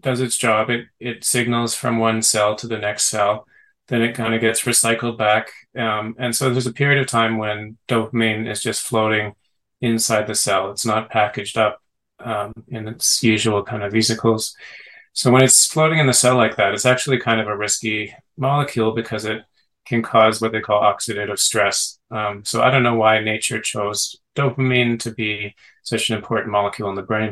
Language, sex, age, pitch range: English, male, 30-49, 105-120 Hz